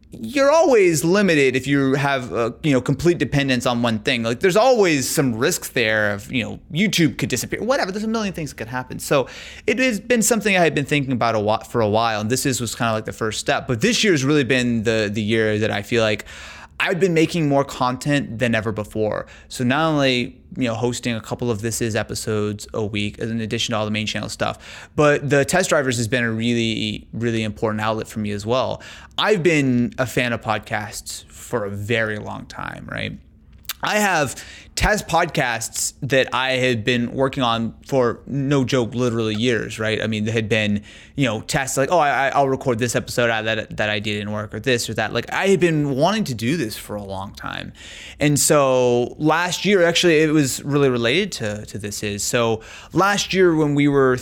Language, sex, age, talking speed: English, male, 30-49, 220 wpm